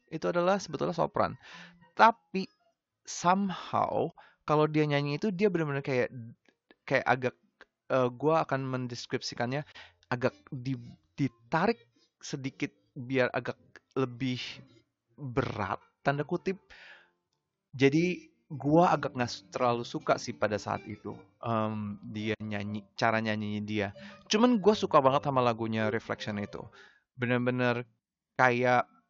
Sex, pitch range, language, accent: male, 115-145 Hz, Indonesian, native